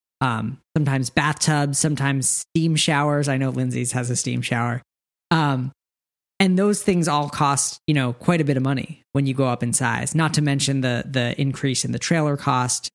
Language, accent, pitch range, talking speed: English, American, 130-155 Hz, 195 wpm